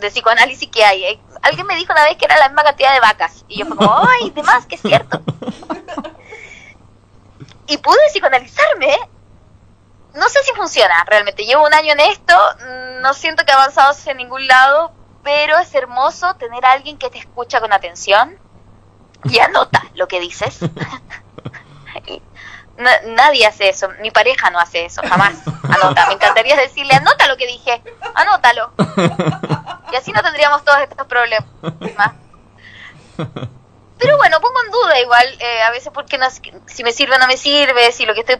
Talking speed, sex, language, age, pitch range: 170 wpm, female, Spanish, 20-39, 215-295 Hz